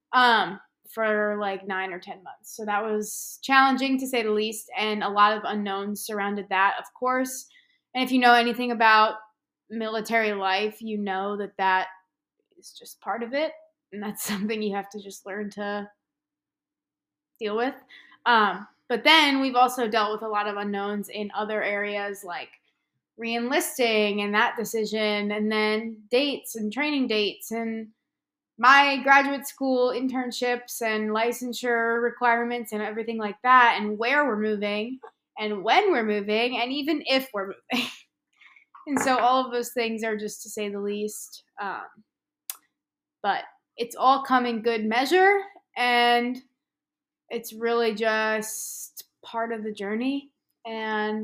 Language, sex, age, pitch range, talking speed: English, female, 20-39, 210-255 Hz, 155 wpm